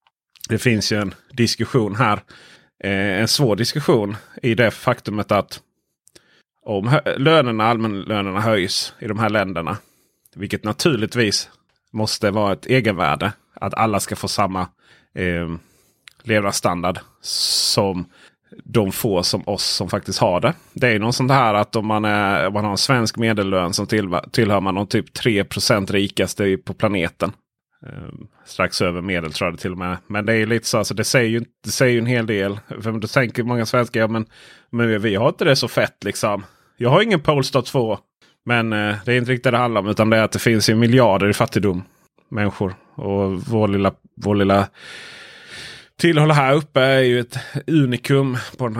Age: 30-49